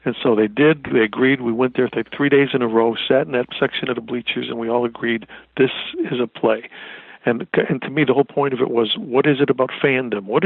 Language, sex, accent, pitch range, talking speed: English, male, American, 125-150 Hz, 265 wpm